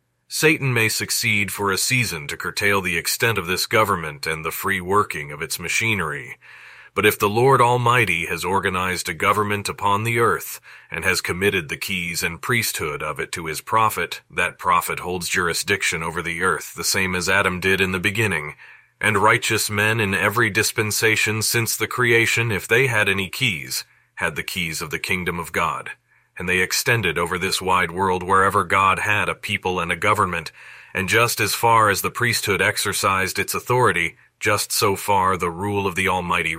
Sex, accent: male, American